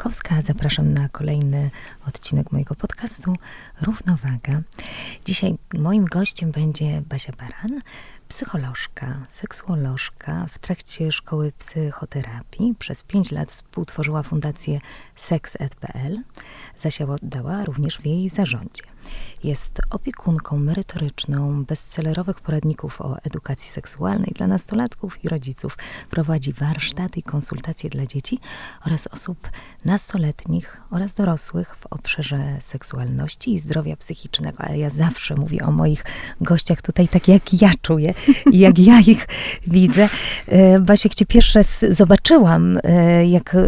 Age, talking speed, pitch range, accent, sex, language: 20-39, 115 wpm, 155-205 Hz, native, female, Polish